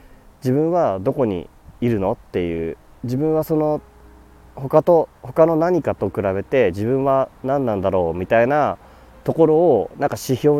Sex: male